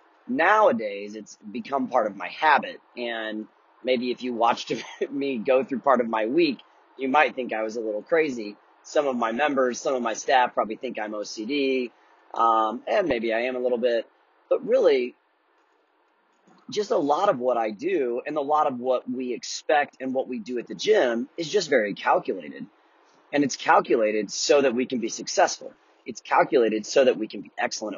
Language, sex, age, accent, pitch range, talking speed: English, male, 30-49, American, 110-140 Hz, 195 wpm